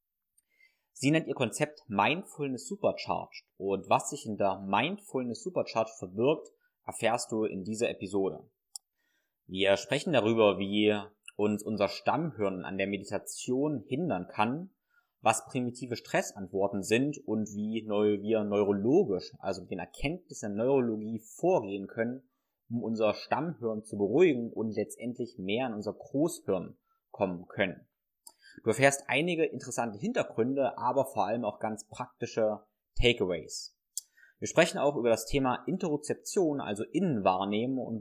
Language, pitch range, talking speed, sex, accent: German, 100-140 Hz, 130 wpm, male, German